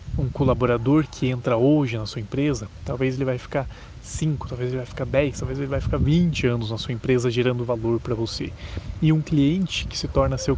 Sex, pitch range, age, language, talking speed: male, 115-145 Hz, 20-39, Portuguese, 215 wpm